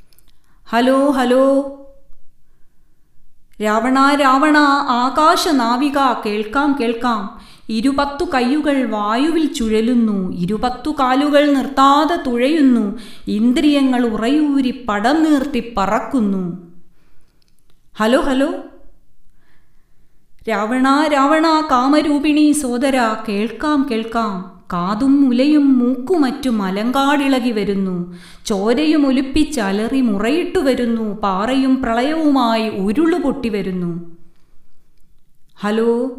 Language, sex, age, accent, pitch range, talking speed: Malayalam, female, 30-49, native, 220-275 Hz, 70 wpm